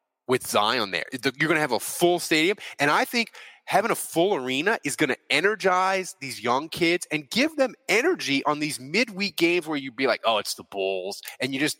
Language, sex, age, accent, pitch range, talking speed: English, male, 20-39, American, 120-160 Hz, 220 wpm